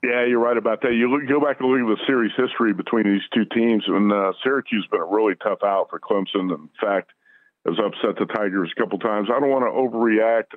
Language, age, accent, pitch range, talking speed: English, 50-69, American, 105-125 Hz, 245 wpm